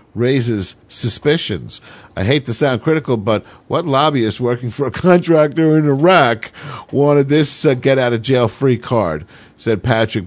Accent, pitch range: American, 100-130 Hz